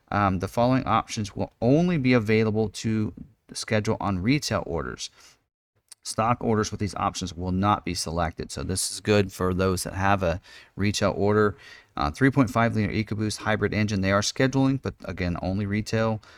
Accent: American